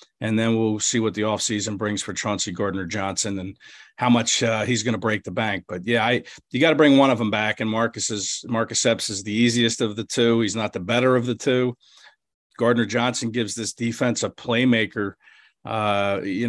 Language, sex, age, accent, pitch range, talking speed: English, male, 50-69, American, 105-125 Hz, 210 wpm